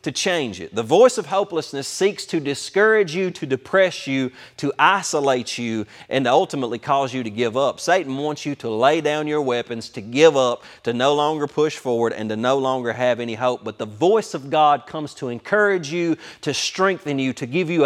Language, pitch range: English, 125-165 Hz